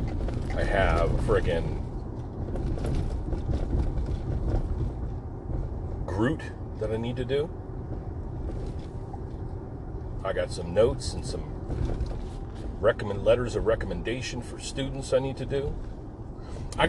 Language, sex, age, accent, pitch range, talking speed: English, male, 40-59, American, 90-115 Hz, 95 wpm